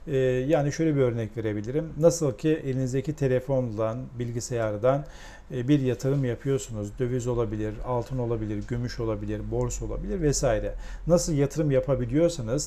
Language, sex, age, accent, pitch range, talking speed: Turkish, male, 40-59, native, 120-150 Hz, 120 wpm